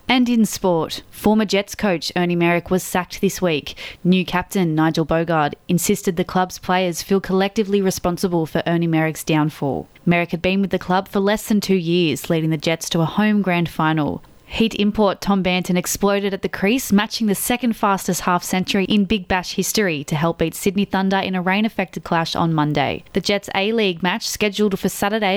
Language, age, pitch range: English, 20-39, 170-200 Hz